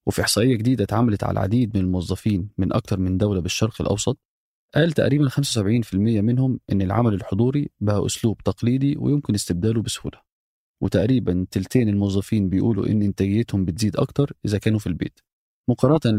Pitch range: 100-125 Hz